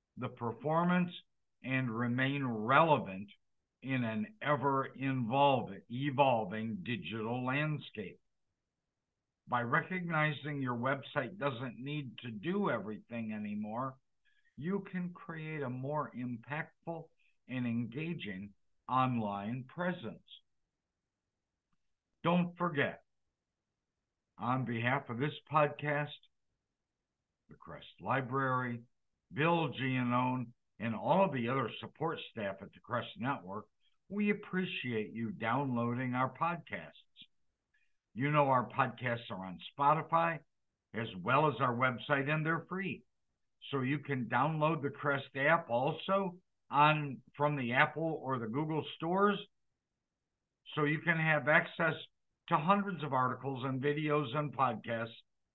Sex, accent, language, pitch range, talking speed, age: male, American, English, 120-155 Hz, 110 wpm, 60-79